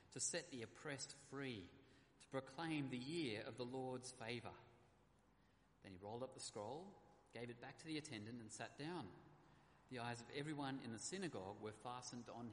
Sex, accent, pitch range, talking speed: male, Australian, 130-160 Hz, 180 wpm